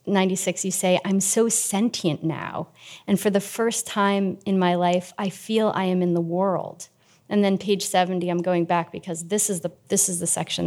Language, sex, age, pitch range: English, female, 30-49, 175-225 Hz